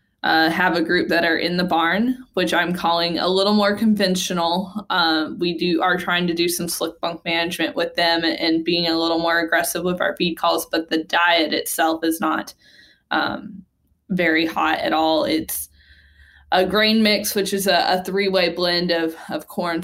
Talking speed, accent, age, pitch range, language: 195 wpm, American, 10-29, 165-180 Hz, English